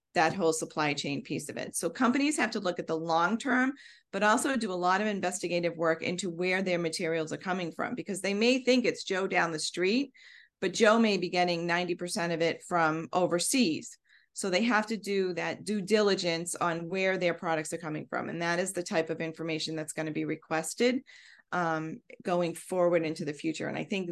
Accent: American